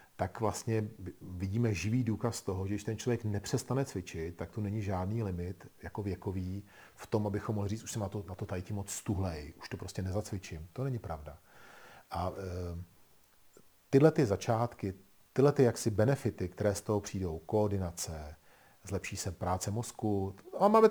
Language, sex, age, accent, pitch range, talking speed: Czech, male, 40-59, native, 90-115 Hz, 165 wpm